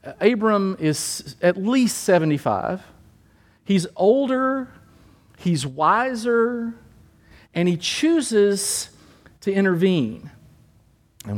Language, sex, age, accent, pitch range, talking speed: English, male, 50-69, American, 160-230 Hz, 80 wpm